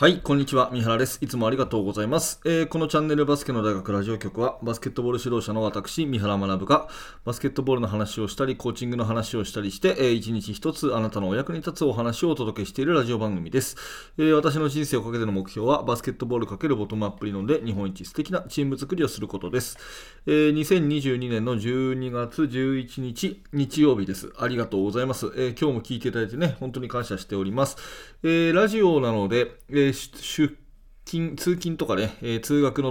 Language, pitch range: Japanese, 105-145 Hz